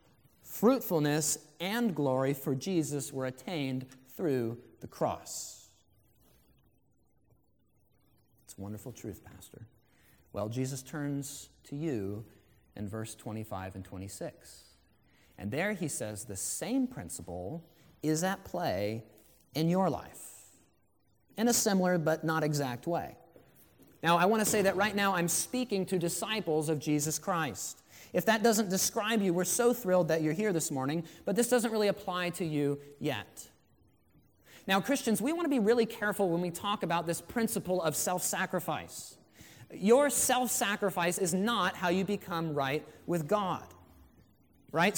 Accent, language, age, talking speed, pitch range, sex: American, English, 30-49, 145 wpm, 140-205 Hz, male